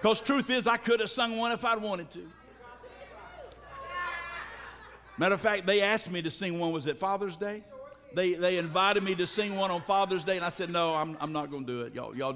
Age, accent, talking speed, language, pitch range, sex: 60-79, American, 225 wpm, English, 165-235 Hz, male